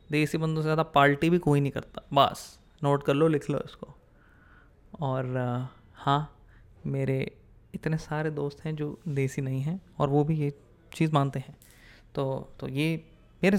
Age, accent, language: 20-39, Indian, English